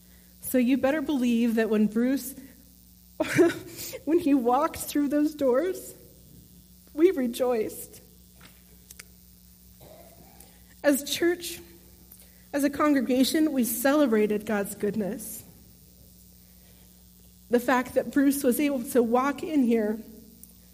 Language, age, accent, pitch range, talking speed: English, 30-49, American, 185-245 Hz, 100 wpm